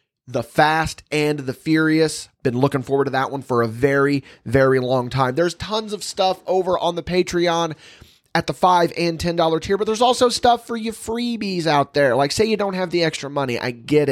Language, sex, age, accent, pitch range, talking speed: English, male, 30-49, American, 125-160 Hz, 215 wpm